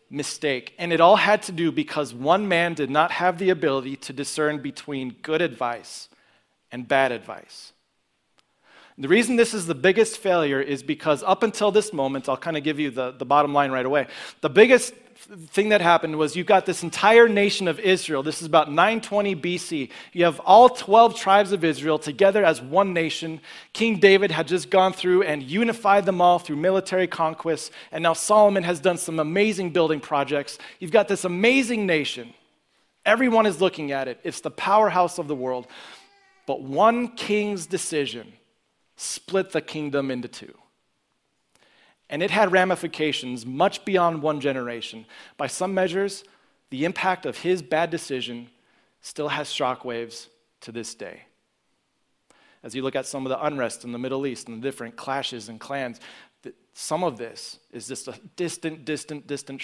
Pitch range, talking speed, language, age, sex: 135-190 Hz, 175 wpm, English, 30-49, male